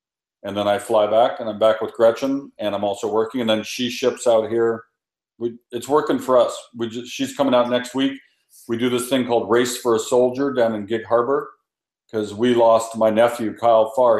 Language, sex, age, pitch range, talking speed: English, male, 50-69, 110-125 Hz, 205 wpm